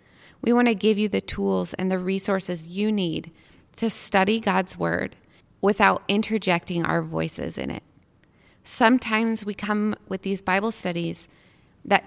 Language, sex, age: English, female, 20-39